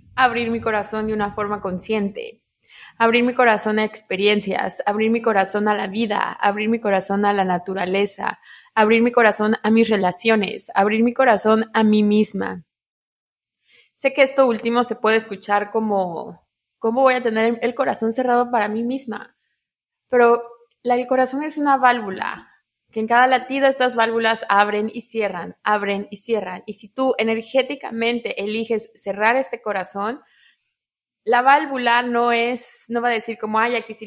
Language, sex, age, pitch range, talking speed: Spanish, female, 20-39, 205-245 Hz, 165 wpm